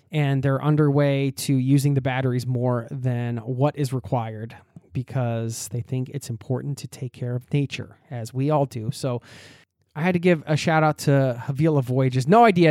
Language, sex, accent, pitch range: English, male, American, 120-145 Hz